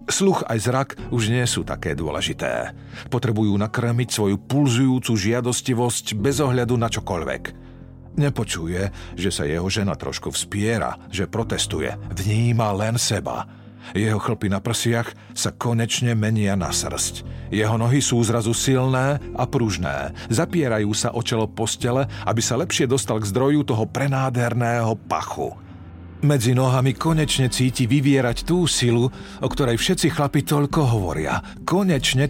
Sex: male